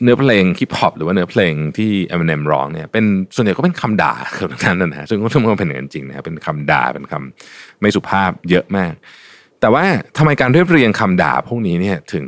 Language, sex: Thai, male